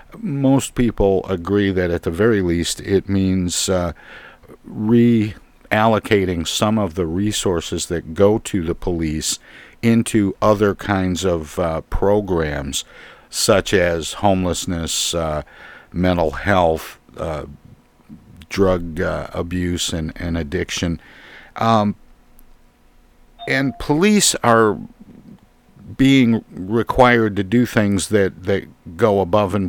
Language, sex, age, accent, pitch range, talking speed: English, male, 50-69, American, 90-110 Hz, 110 wpm